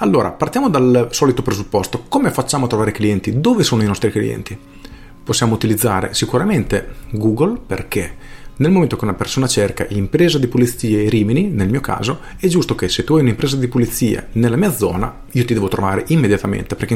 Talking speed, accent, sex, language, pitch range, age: 185 wpm, native, male, Italian, 105-130 Hz, 40-59